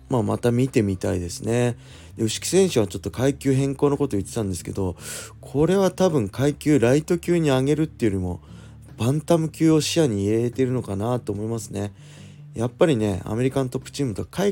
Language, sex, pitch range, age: Japanese, male, 100-135 Hz, 20-39